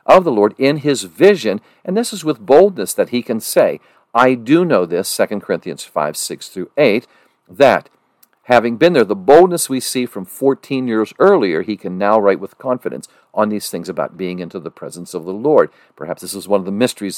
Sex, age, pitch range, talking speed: male, 50-69, 100-130 Hz, 215 wpm